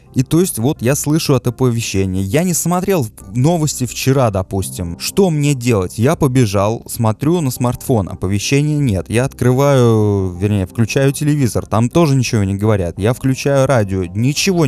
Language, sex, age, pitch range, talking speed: Russian, male, 20-39, 100-135 Hz, 155 wpm